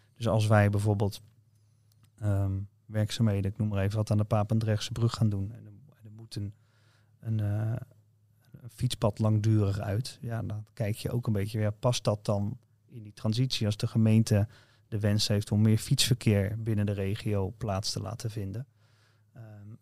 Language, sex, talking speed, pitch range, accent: Dutch, male, 180 wpm, 105-120 Hz, Dutch